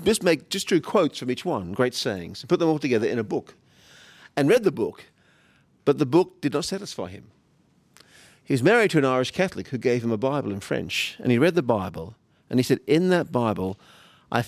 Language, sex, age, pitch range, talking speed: English, male, 50-69, 120-160 Hz, 230 wpm